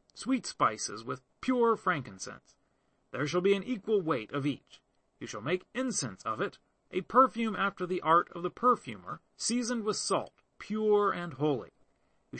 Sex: male